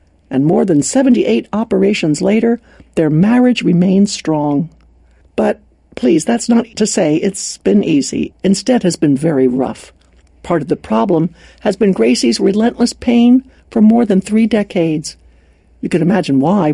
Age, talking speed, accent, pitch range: 60-79, 150 wpm, American, 170-245 Hz